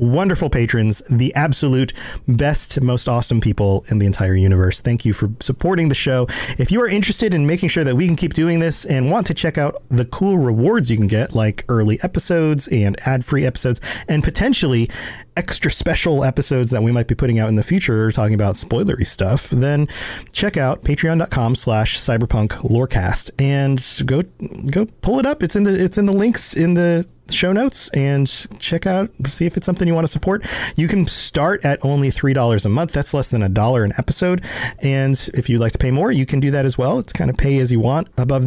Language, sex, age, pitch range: English, male, 30-49, 120-165 Hz